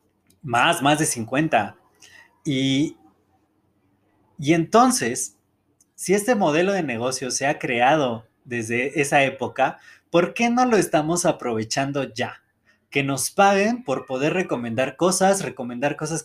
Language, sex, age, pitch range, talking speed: Spanish, male, 20-39, 130-175 Hz, 125 wpm